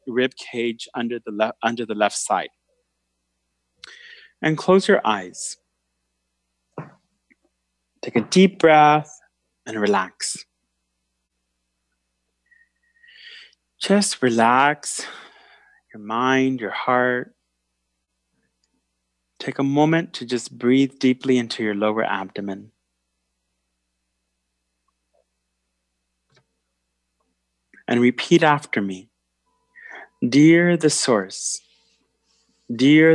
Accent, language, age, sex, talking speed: American, English, 30-49, male, 75 wpm